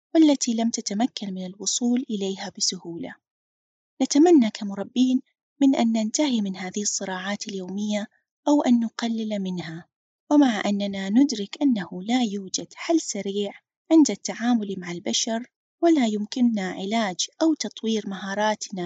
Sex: female